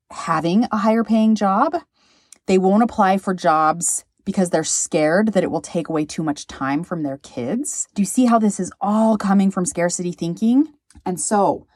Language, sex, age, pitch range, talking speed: English, female, 30-49, 170-240 Hz, 190 wpm